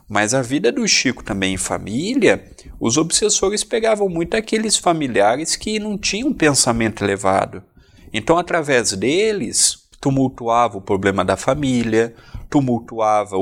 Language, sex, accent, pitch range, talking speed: Portuguese, male, Brazilian, 105-140 Hz, 125 wpm